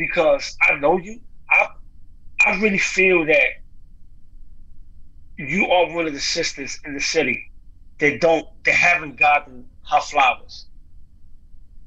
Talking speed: 125 wpm